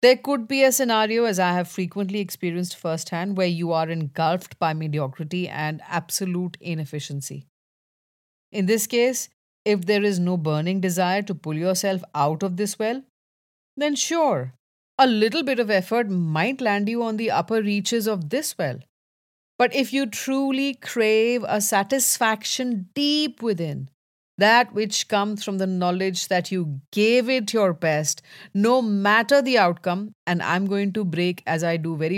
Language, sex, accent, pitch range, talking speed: English, female, Indian, 160-220 Hz, 160 wpm